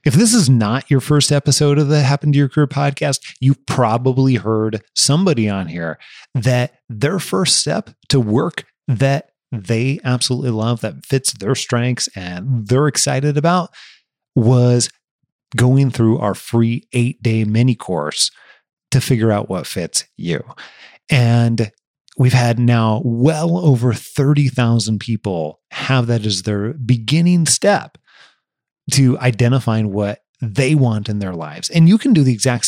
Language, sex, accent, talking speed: English, male, American, 145 wpm